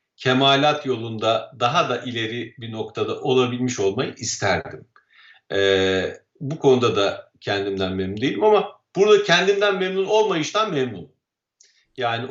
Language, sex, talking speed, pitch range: Turkish, male, 115 wpm, 110-145 Hz